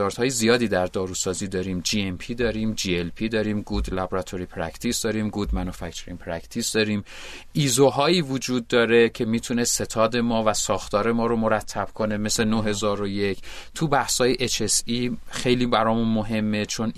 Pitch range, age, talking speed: 105-130 Hz, 30-49, 155 wpm